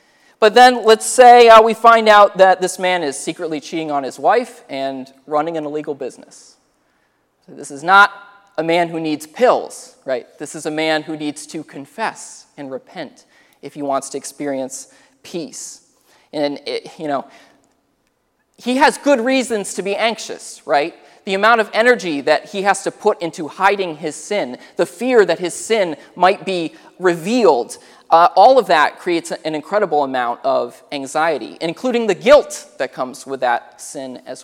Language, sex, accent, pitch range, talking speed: English, male, American, 150-215 Hz, 170 wpm